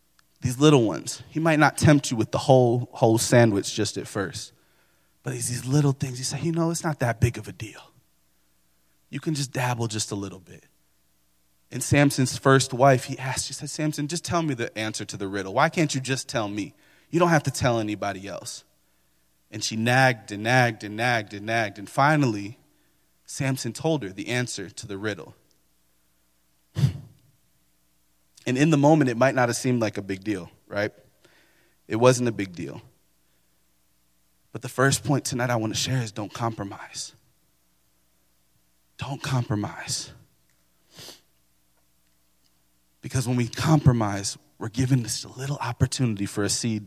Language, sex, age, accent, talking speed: English, male, 30-49, American, 175 wpm